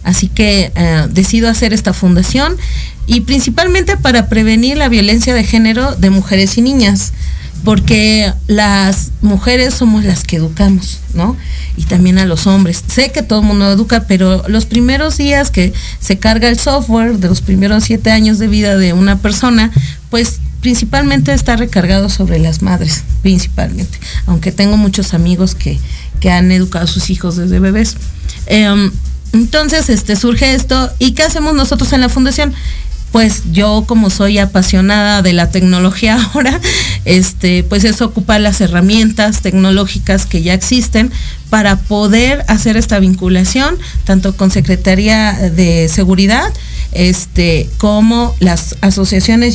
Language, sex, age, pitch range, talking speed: Spanish, female, 40-59, 185-230 Hz, 150 wpm